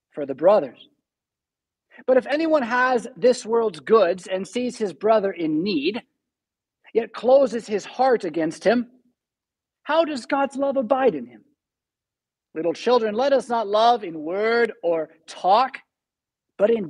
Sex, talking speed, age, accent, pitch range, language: male, 145 wpm, 40-59, American, 195-255 Hz, English